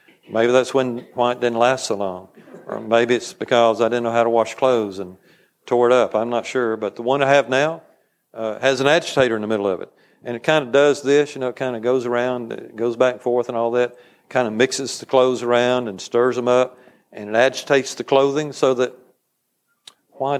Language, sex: English, male